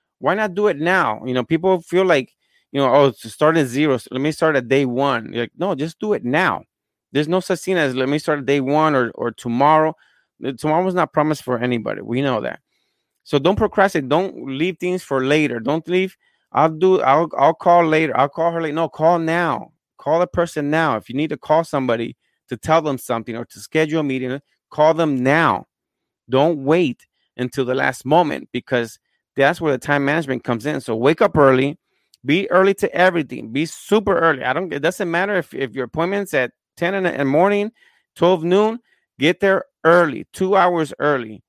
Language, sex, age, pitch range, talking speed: English, male, 30-49, 135-175 Hz, 210 wpm